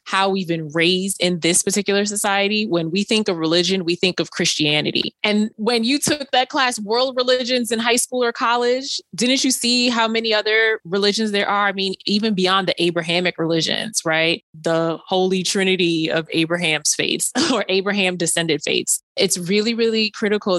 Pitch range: 170-210 Hz